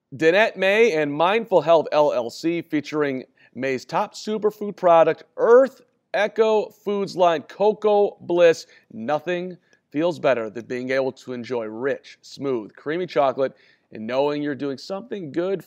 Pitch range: 135-175 Hz